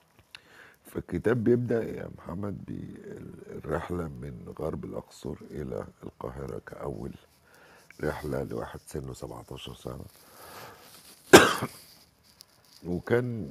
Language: Arabic